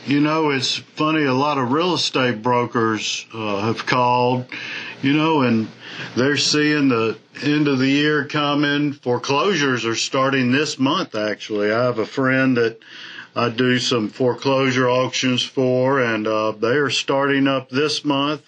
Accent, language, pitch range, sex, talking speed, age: American, English, 115-140 Hz, male, 160 wpm, 50-69